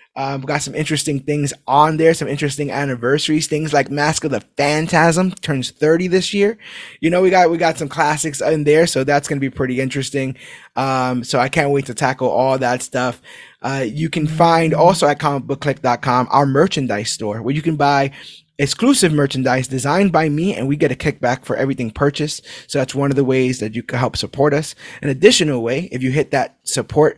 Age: 20-39